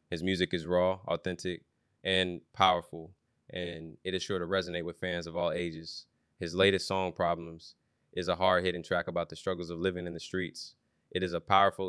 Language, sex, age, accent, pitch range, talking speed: English, male, 20-39, American, 85-90 Hz, 190 wpm